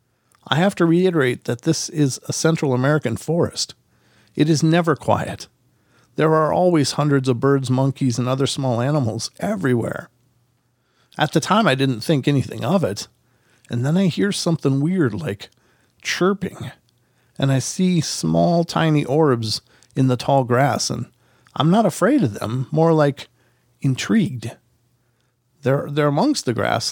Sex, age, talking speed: male, 50-69, 150 wpm